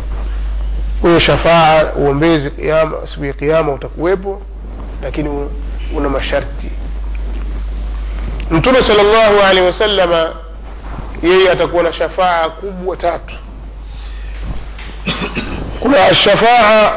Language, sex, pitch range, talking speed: Swahili, male, 150-180 Hz, 80 wpm